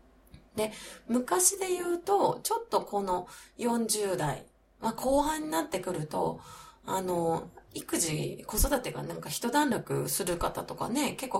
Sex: female